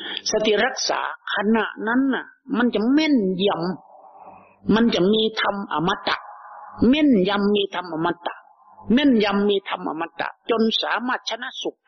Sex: male